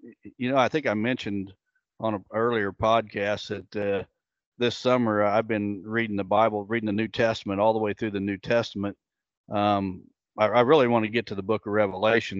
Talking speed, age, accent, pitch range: 205 wpm, 50-69, American, 105-120 Hz